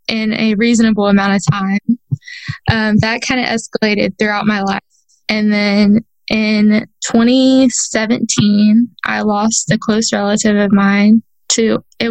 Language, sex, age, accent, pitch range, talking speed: English, female, 10-29, American, 200-230 Hz, 135 wpm